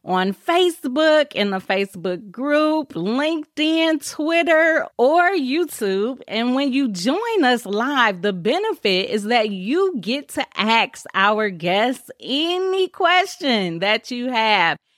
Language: English